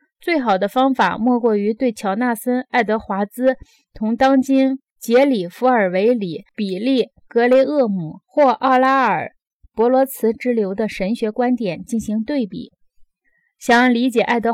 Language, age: Chinese, 20-39